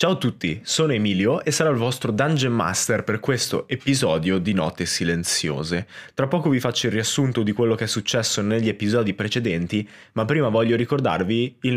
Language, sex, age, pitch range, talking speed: Italian, male, 20-39, 105-135 Hz, 185 wpm